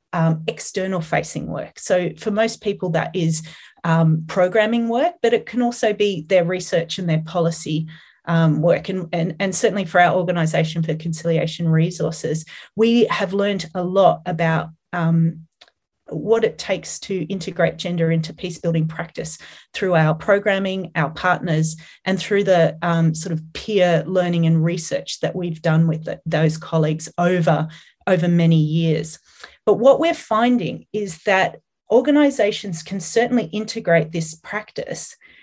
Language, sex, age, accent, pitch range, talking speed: English, female, 30-49, Australian, 165-200 Hz, 150 wpm